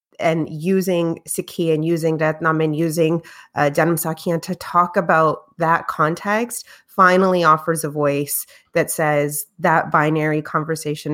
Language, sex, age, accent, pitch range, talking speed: English, female, 30-49, American, 155-185 Hz, 135 wpm